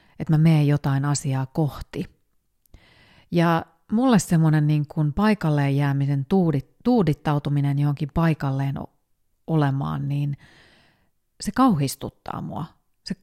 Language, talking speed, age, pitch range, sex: Finnish, 100 wpm, 30-49, 140-170 Hz, female